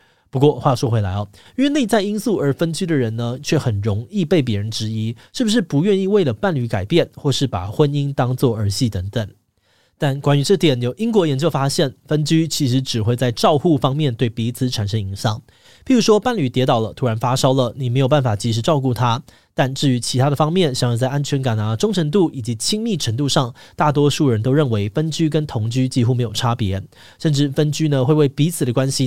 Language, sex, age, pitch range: Chinese, male, 20-39, 115-160 Hz